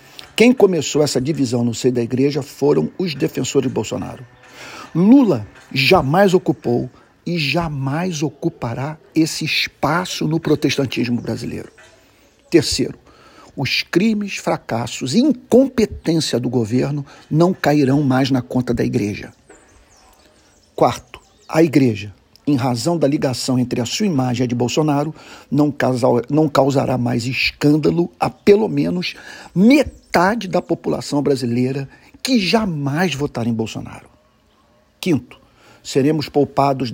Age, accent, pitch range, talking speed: 50-69, Brazilian, 125-160 Hz, 120 wpm